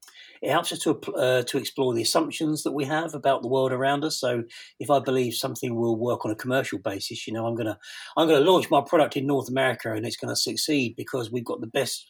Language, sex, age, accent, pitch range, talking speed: English, male, 40-59, British, 110-140 Hz, 260 wpm